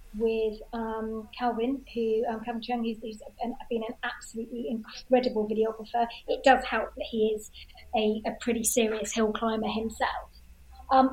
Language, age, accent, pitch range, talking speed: English, 30-49, British, 230-285 Hz, 150 wpm